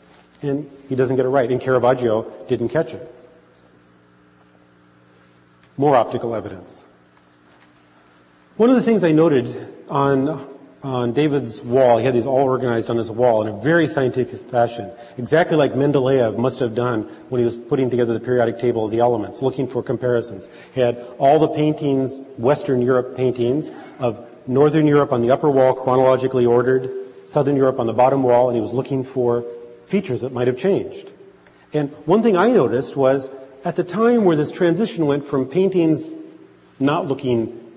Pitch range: 120-150 Hz